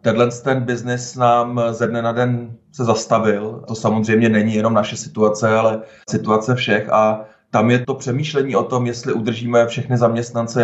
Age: 30-49